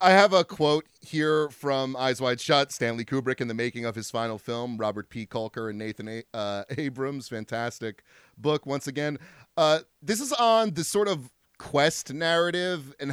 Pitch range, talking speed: 125-175 Hz, 180 wpm